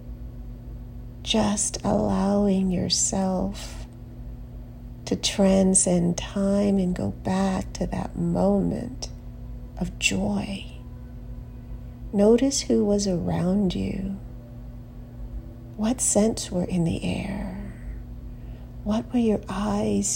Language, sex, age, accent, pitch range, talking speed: English, female, 50-69, American, 120-195 Hz, 85 wpm